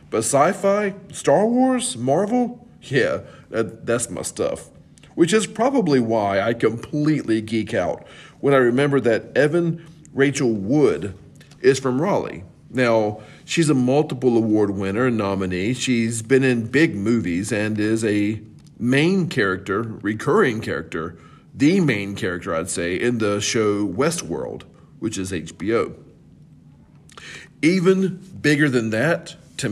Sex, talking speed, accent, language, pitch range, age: male, 130 wpm, American, English, 110-155 Hz, 40-59